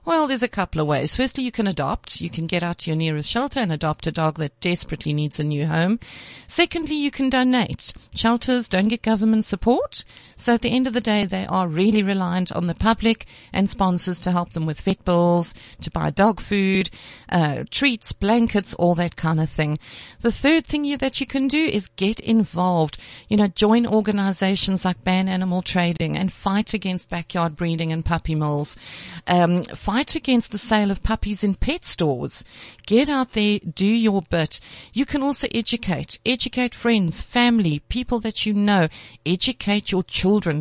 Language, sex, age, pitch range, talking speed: English, female, 50-69, 170-230 Hz, 190 wpm